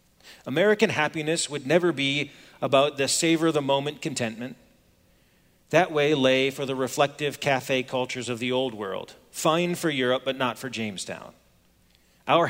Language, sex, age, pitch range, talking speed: English, male, 40-59, 135-170 Hz, 145 wpm